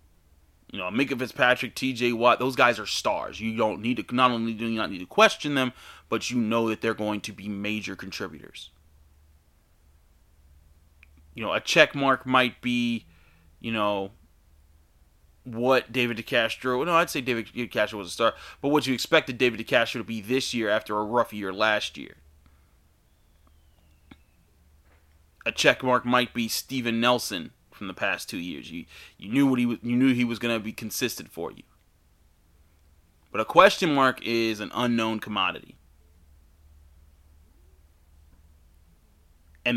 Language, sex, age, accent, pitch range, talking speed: English, male, 30-49, American, 75-125 Hz, 160 wpm